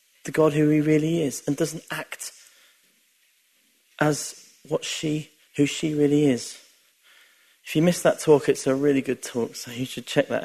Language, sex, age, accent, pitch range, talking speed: English, male, 40-59, British, 145-175 Hz, 170 wpm